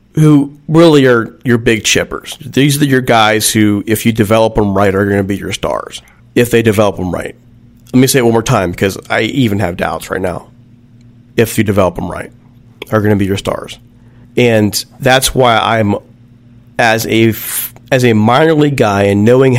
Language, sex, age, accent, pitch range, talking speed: English, male, 40-59, American, 105-125 Hz, 195 wpm